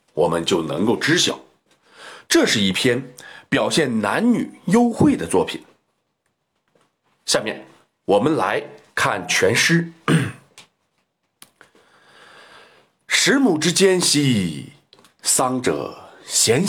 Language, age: Chinese, 50-69